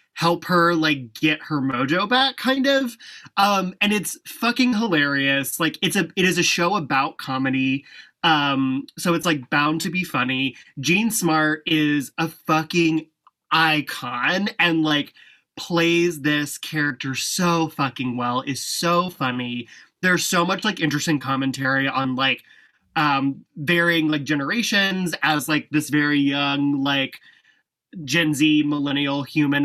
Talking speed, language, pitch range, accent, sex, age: 140 wpm, English, 140-170 Hz, American, male, 20-39